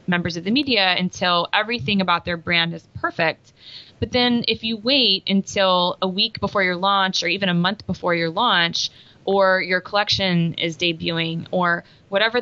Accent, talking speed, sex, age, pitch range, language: American, 175 wpm, female, 20-39, 165-200 Hz, English